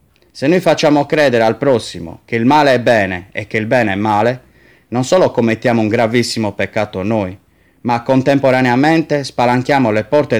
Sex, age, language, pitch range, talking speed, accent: male, 30-49, Italian, 105-130 Hz, 165 wpm, native